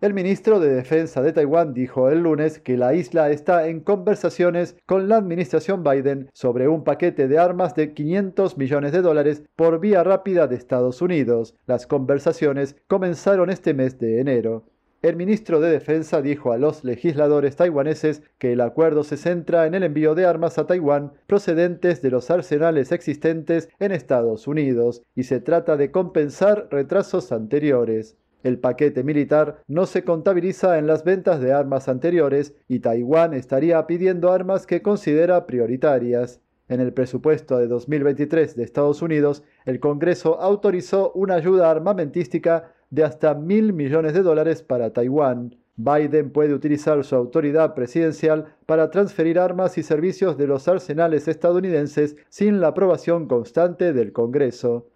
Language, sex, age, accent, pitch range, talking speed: Spanish, male, 40-59, Argentinian, 140-175 Hz, 155 wpm